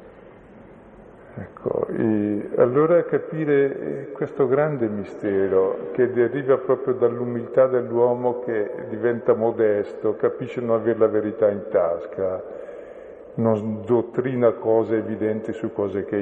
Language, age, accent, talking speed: Italian, 50-69, native, 105 wpm